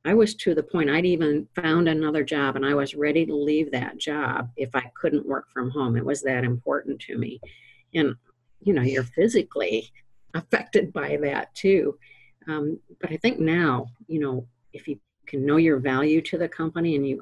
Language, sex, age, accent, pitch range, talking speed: English, female, 50-69, American, 130-155 Hz, 200 wpm